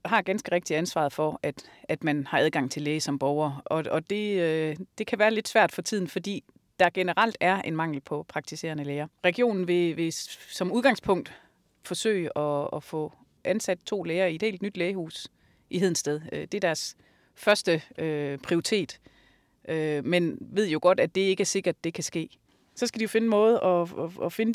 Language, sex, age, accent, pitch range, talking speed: Danish, female, 30-49, native, 160-210 Hz, 205 wpm